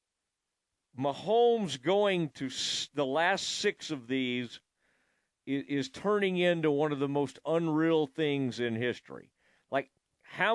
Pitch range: 140-190 Hz